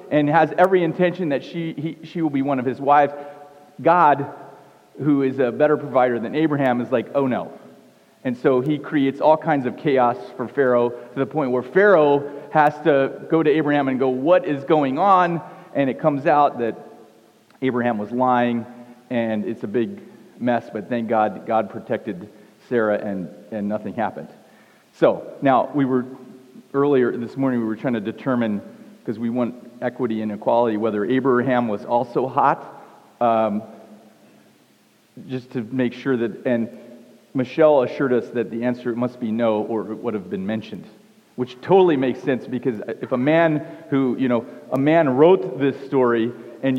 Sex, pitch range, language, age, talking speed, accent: male, 120-150 Hz, English, 40-59, 175 wpm, American